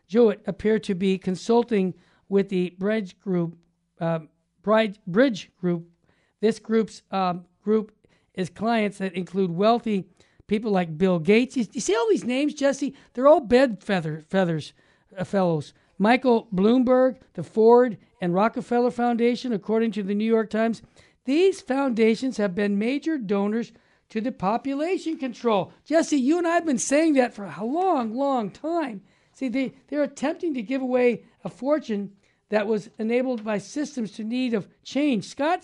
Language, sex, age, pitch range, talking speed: English, male, 50-69, 200-255 Hz, 155 wpm